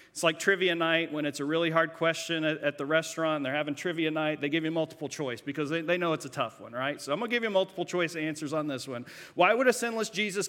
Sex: male